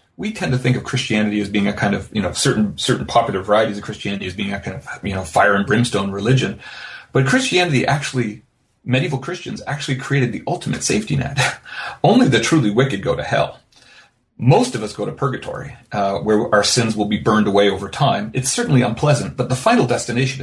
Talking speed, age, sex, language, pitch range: 210 wpm, 40-59, male, English, 110-135 Hz